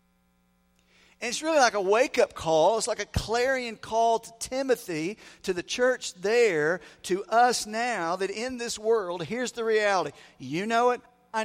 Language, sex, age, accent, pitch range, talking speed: English, male, 50-69, American, 170-245 Hz, 170 wpm